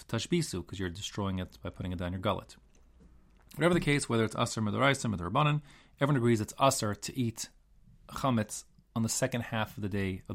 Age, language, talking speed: 30-49, English, 195 wpm